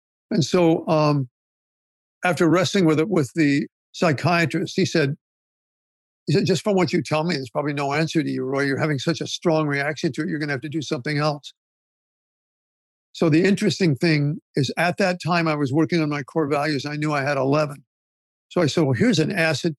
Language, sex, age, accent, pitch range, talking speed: English, male, 60-79, American, 145-175 Hz, 210 wpm